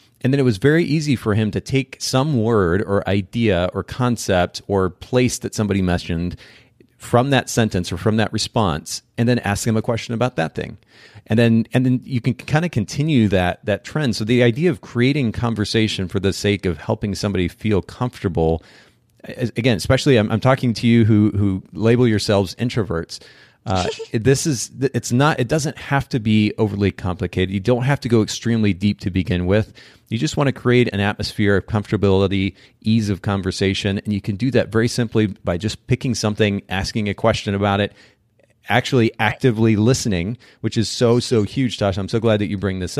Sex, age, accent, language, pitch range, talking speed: male, 30-49, American, English, 100-125 Hz, 195 wpm